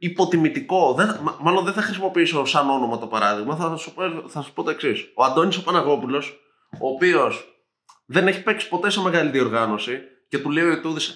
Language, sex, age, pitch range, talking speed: Greek, male, 20-39, 140-190 Hz, 195 wpm